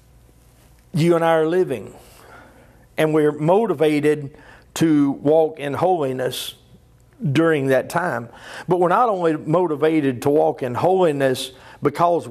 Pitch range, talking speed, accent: 135-170 Hz, 120 wpm, American